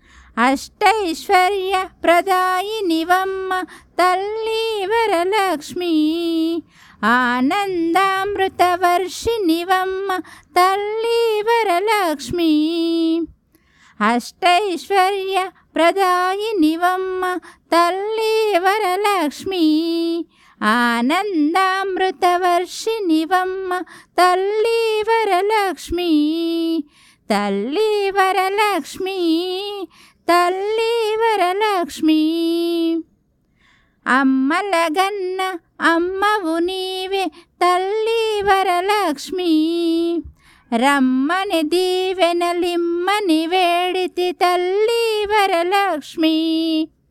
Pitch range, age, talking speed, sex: 330-385 Hz, 20-39, 40 wpm, female